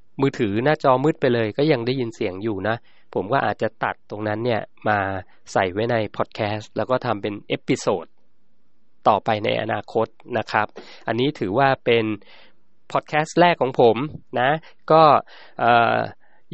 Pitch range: 110-135 Hz